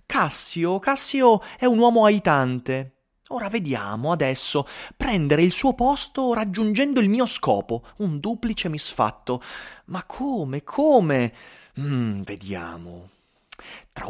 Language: Italian